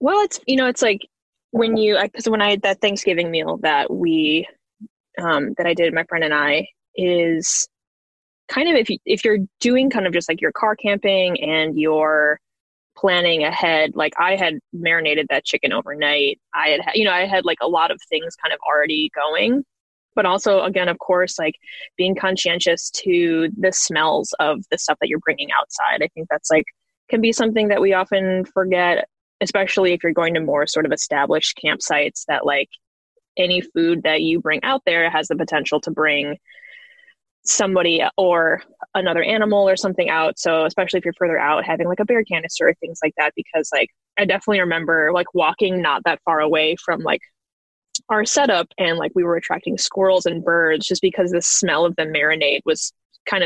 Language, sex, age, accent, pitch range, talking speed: English, female, 10-29, American, 160-205 Hz, 195 wpm